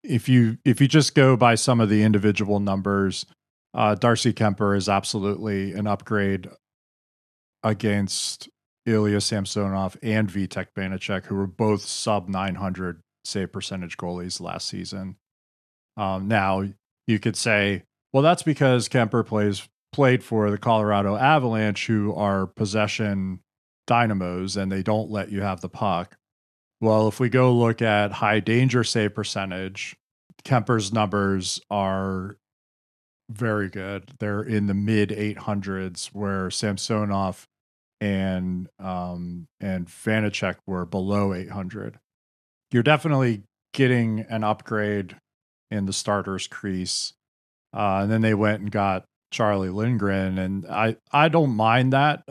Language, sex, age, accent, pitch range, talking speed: English, male, 30-49, American, 95-115 Hz, 130 wpm